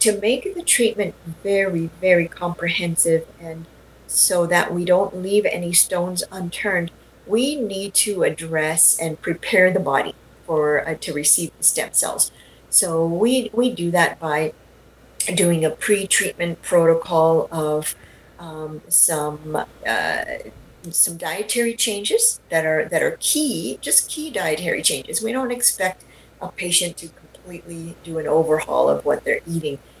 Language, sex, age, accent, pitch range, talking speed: English, female, 50-69, American, 160-205 Hz, 140 wpm